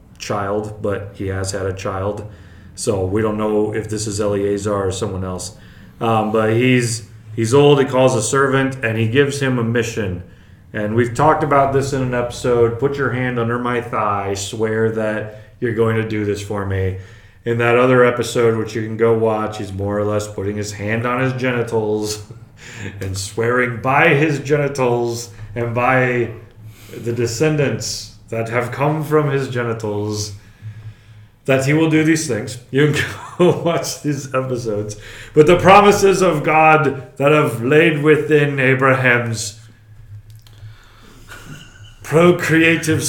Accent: American